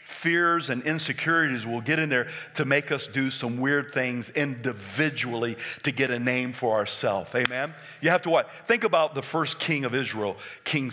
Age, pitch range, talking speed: 50-69, 120-175 Hz, 185 wpm